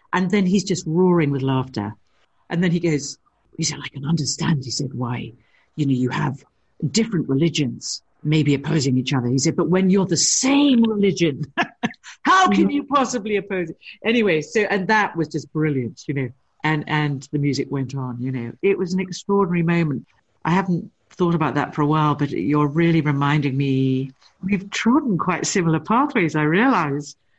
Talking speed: 185 wpm